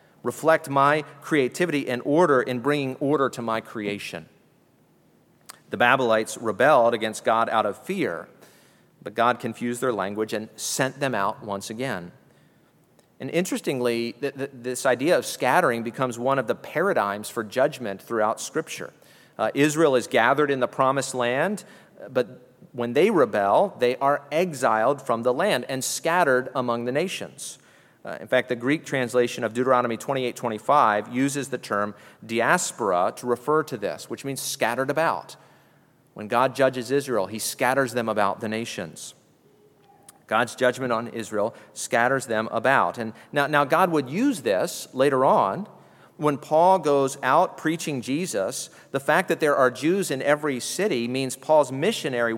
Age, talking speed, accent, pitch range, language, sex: 40-59, 150 wpm, American, 120-145 Hz, English, male